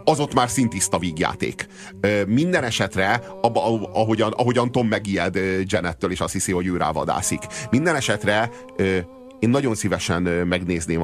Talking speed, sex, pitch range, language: 135 wpm, male, 95-125 Hz, Hungarian